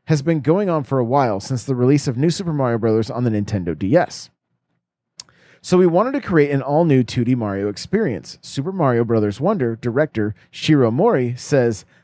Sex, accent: male, American